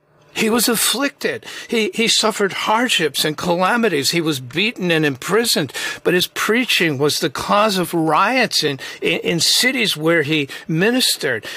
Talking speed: 150 wpm